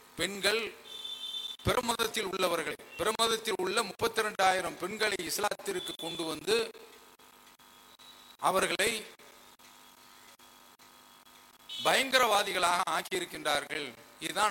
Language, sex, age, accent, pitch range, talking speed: English, male, 50-69, Indian, 180-235 Hz, 60 wpm